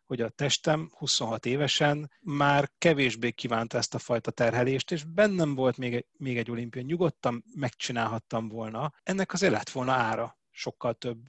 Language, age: Hungarian, 30-49